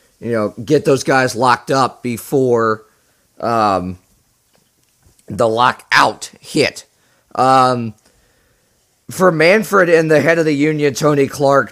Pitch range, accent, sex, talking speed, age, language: 125-155 Hz, American, male, 120 wpm, 40-59, English